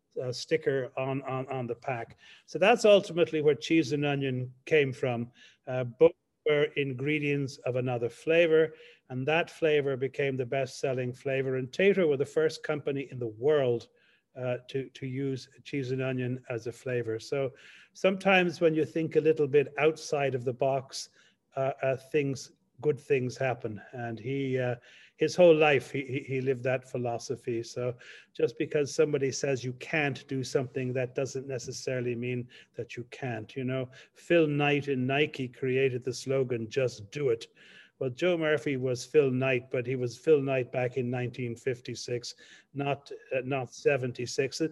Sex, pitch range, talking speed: male, 125-155 Hz, 165 wpm